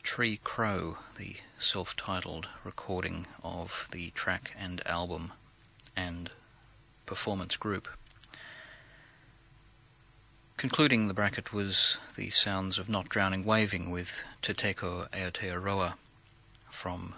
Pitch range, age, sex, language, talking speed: 95-115 Hz, 30-49, male, English, 95 wpm